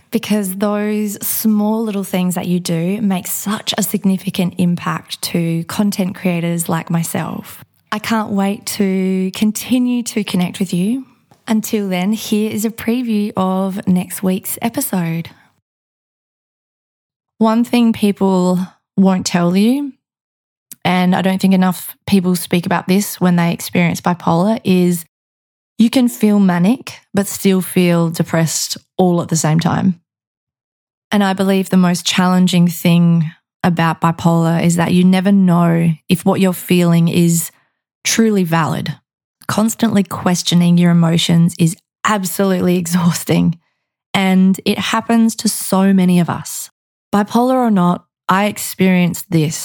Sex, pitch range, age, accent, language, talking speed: female, 170-210 Hz, 20-39, Australian, English, 135 wpm